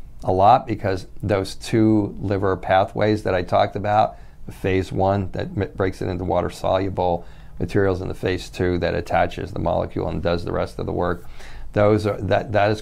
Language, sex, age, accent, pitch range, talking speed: English, male, 40-59, American, 90-105 Hz, 190 wpm